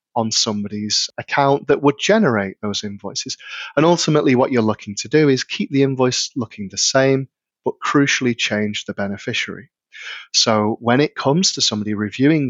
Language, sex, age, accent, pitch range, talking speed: English, male, 30-49, British, 105-135 Hz, 165 wpm